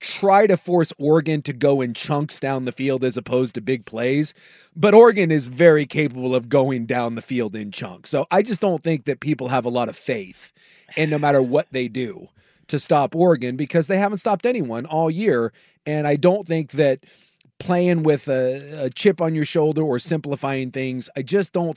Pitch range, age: 130-175 Hz, 30-49